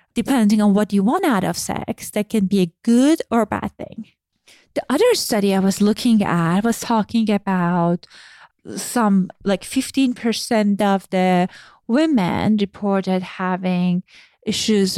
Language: English